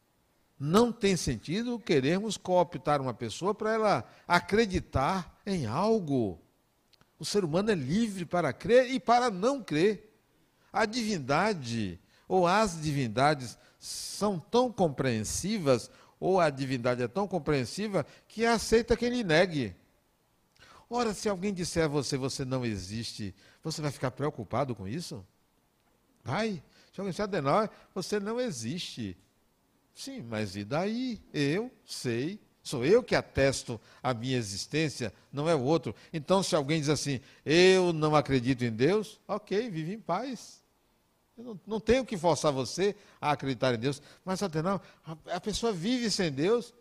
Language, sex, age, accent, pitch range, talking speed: Portuguese, male, 60-79, Brazilian, 130-210 Hz, 150 wpm